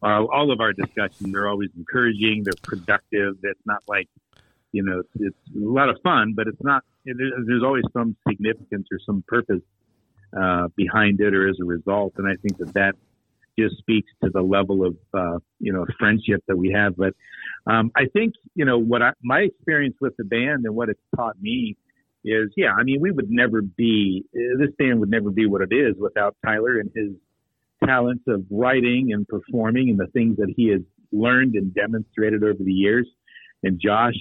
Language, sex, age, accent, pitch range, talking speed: English, male, 50-69, American, 95-120 Hz, 195 wpm